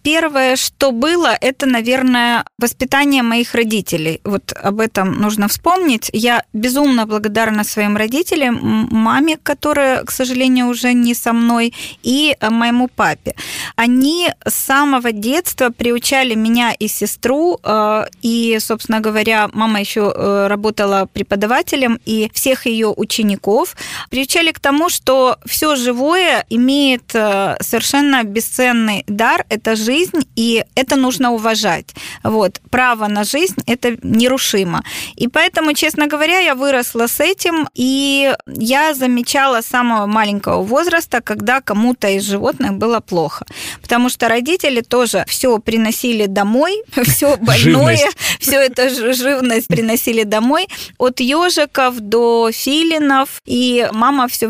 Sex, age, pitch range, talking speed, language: female, 20-39, 215-275 Hz, 125 wpm, Ukrainian